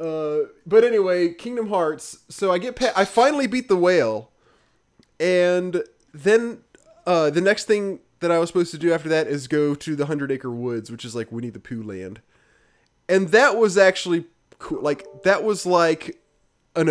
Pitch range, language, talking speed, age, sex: 130-185 Hz, English, 185 wpm, 20-39, male